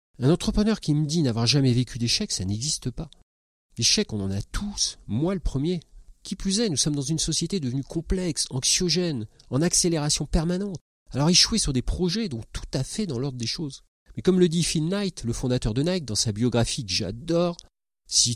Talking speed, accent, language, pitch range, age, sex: 205 wpm, French, French, 110-170 Hz, 40-59, male